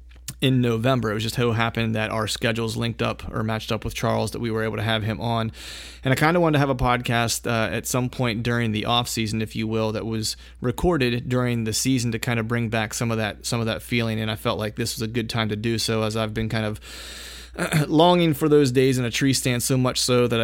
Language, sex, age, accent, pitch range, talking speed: English, male, 30-49, American, 110-125 Hz, 270 wpm